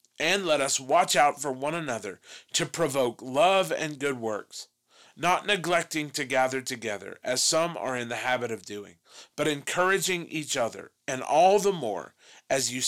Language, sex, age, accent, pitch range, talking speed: English, male, 40-59, American, 120-165 Hz, 170 wpm